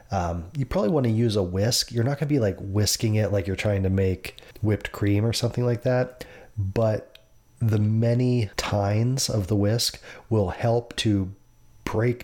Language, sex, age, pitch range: English, male, 30-49, 95-110 Hz